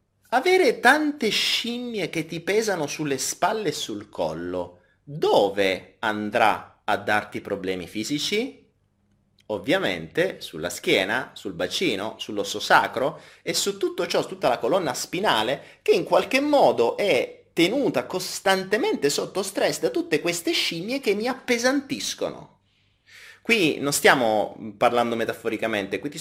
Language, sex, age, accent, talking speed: Italian, male, 30-49, native, 130 wpm